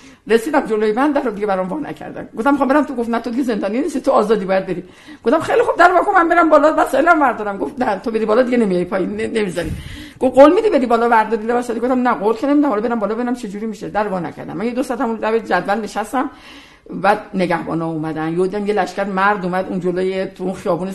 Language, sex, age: Persian, female, 50-69